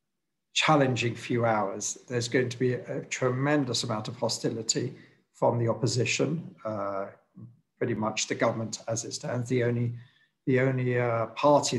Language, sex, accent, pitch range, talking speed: English, male, British, 115-130 Hz, 150 wpm